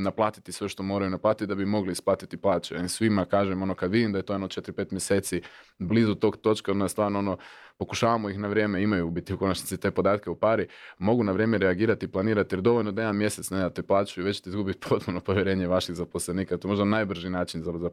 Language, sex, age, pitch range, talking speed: Croatian, male, 30-49, 90-110 Hz, 240 wpm